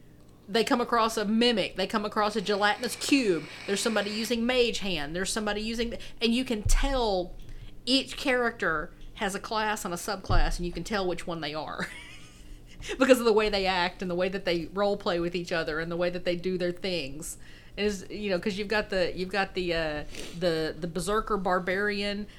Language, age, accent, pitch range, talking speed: English, 40-59, American, 175-215 Hz, 210 wpm